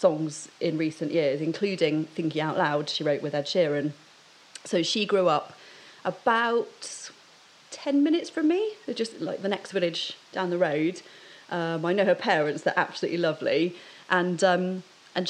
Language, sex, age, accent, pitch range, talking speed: English, female, 30-49, British, 160-190 Hz, 160 wpm